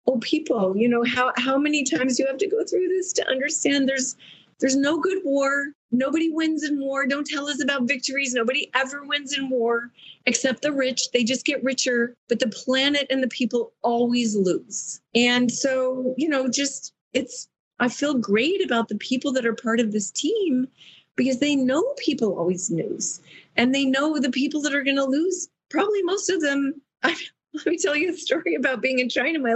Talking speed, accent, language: 200 wpm, American, English